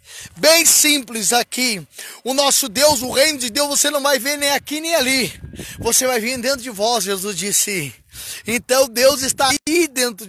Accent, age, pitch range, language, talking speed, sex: Brazilian, 20-39, 255-295 Hz, Portuguese, 180 wpm, male